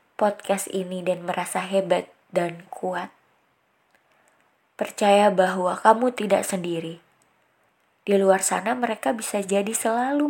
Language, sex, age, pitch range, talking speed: Indonesian, female, 20-39, 180-210 Hz, 110 wpm